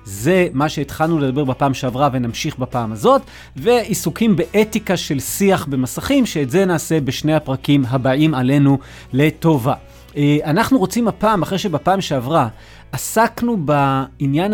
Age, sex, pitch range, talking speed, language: 30-49, male, 135-185 Hz, 125 wpm, Hebrew